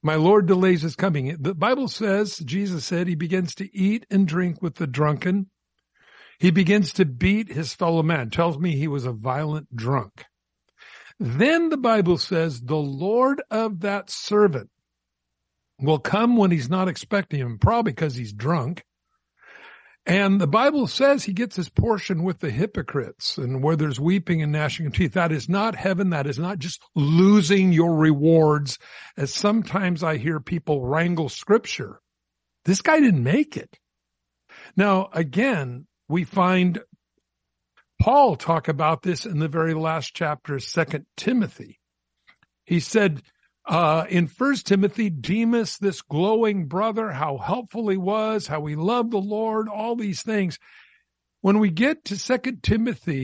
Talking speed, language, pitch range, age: 155 wpm, English, 150-205 Hz, 60-79